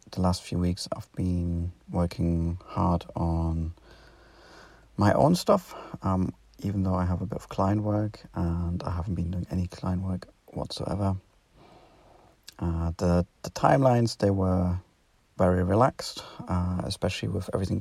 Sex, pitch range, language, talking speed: male, 90-105 Hz, English, 145 wpm